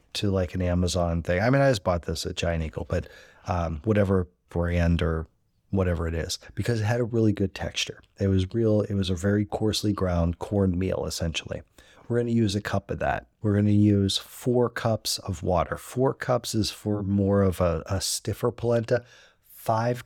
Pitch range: 90-110 Hz